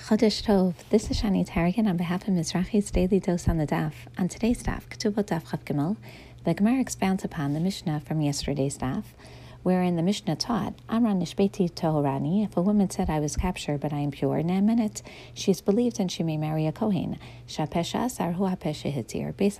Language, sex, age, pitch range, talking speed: English, female, 40-59, 150-200 Hz, 190 wpm